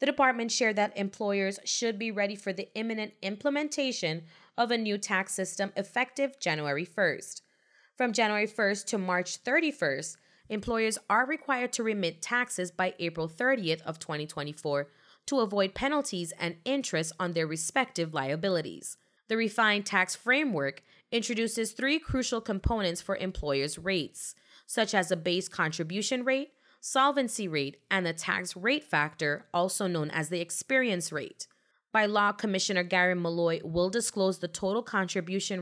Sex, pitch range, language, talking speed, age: female, 175-230 Hz, English, 145 wpm, 20-39